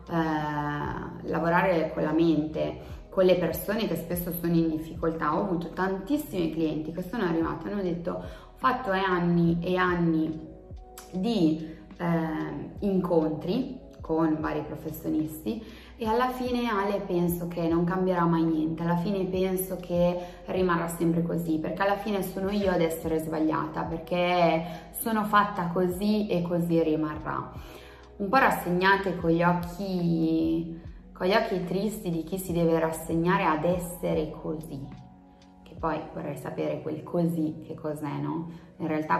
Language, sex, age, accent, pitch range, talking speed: Italian, female, 20-39, native, 160-185 Hz, 140 wpm